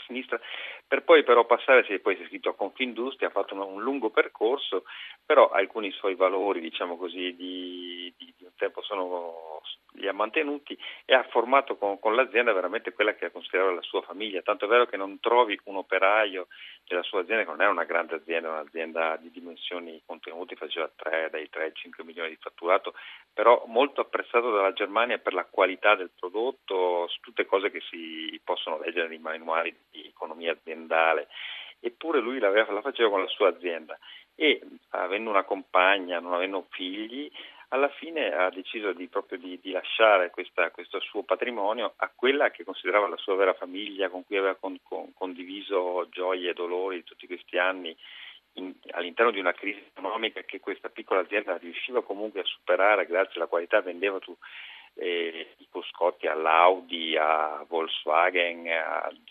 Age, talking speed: 40-59, 175 wpm